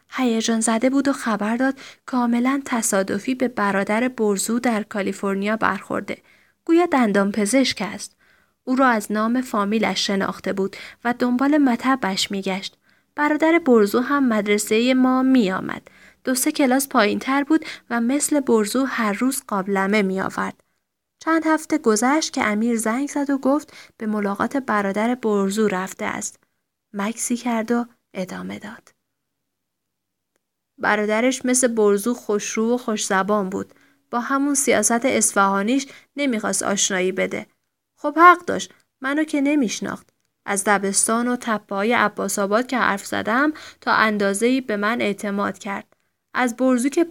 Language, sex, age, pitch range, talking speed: Persian, female, 30-49, 205-260 Hz, 130 wpm